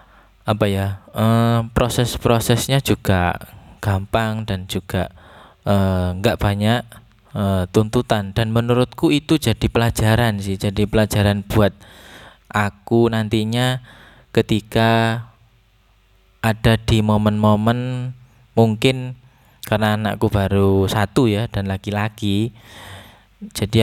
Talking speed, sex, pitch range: 95 wpm, male, 100-115 Hz